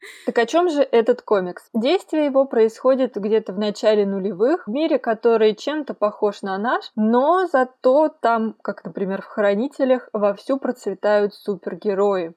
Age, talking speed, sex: 20-39, 145 wpm, female